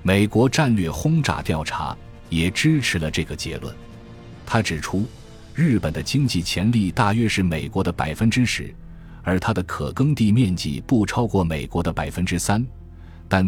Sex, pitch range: male, 85-115 Hz